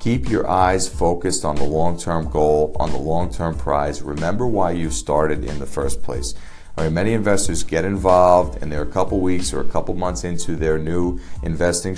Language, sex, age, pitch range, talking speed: English, male, 40-59, 75-95 Hz, 195 wpm